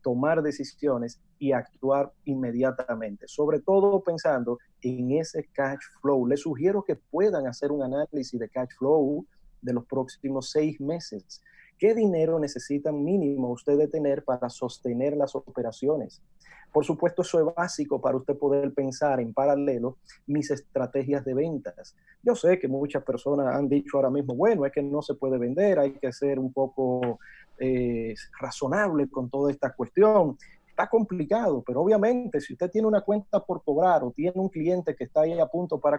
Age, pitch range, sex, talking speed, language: 30-49, 135-175 Hz, male, 165 wpm, Spanish